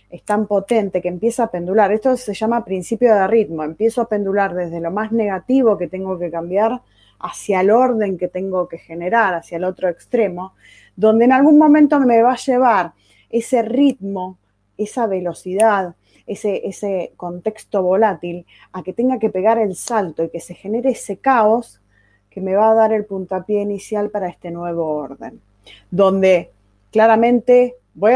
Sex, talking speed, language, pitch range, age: female, 170 wpm, Spanish, 180-235 Hz, 20-39